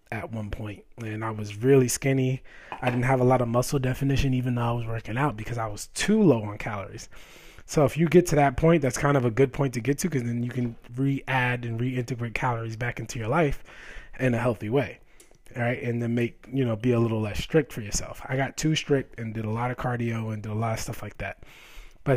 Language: English